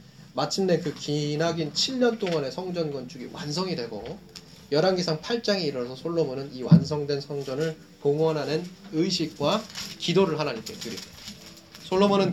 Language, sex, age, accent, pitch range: Korean, male, 20-39, native, 150-190 Hz